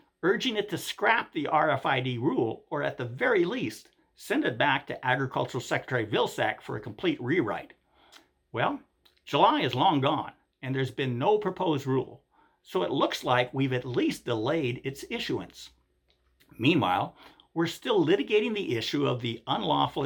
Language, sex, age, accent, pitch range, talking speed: English, male, 50-69, American, 125-175 Hz, 160 wpm